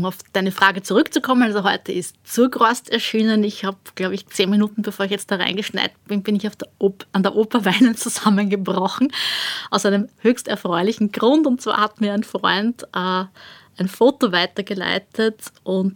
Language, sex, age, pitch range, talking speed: German, female, 20-39, 190-215 Hz, 180 wpm